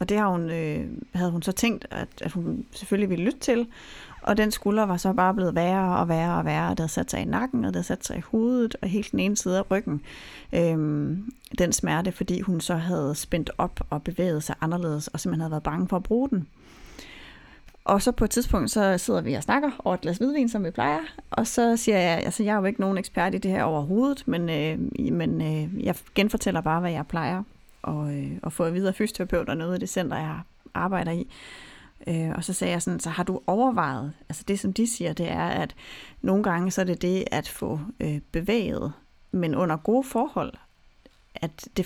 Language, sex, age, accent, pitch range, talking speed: Danish, female, 30-49, native, 165-215 Hz, 220 wpm